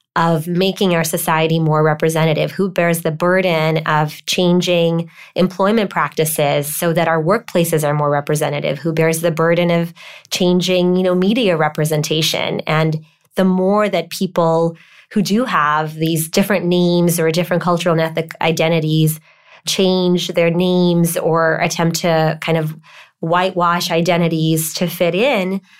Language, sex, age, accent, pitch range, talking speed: English, female, 20-39, American, 160-180 Hz, 140 wpm